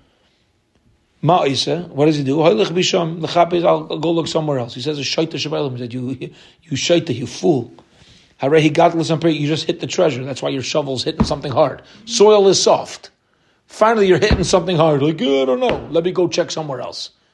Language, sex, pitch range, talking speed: English, male, 150-190 Hz, 165 wpm